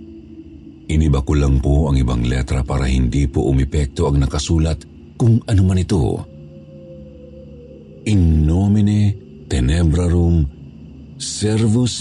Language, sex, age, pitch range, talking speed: Filipino, male, 50-69, 75-110 Hz, 100 wpm